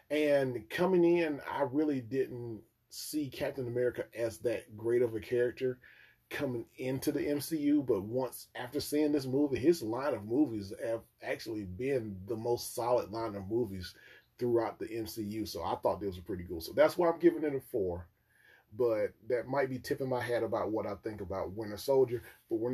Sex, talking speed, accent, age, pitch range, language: male, 190 wpm, American, 30-49, 115-140 Hz, English